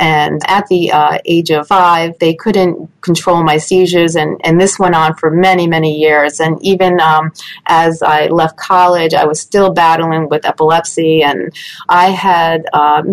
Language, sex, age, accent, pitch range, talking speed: English, female, 30-49, American, 160-185 Hz, 175 wpm